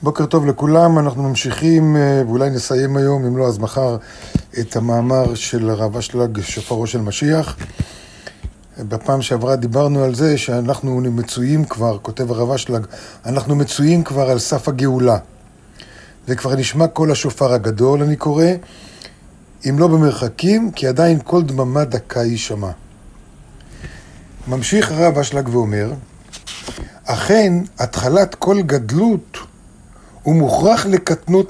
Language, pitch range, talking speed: Hebrew, 120-160 Hz, 120 wpm